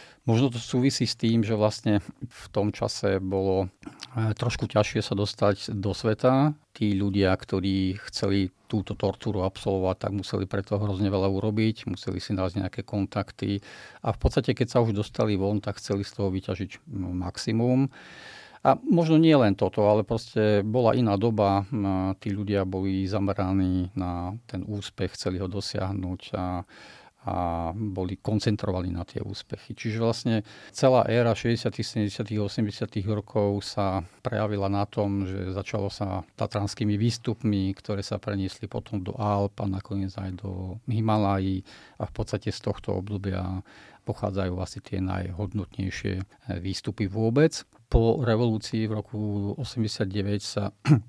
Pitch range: 95-110 Hz